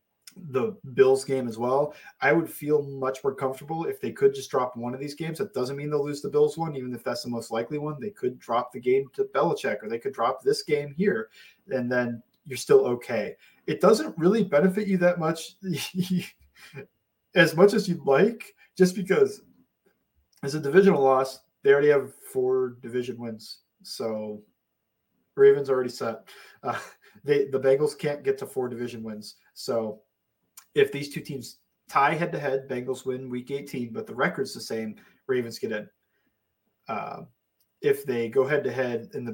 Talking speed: 185 wpm